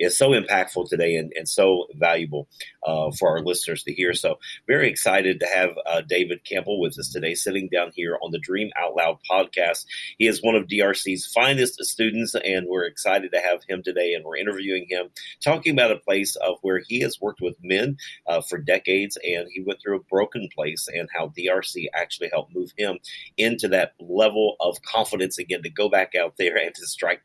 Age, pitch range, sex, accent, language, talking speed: 40-59, 90-105 Hz, male, American, English, 205 wpm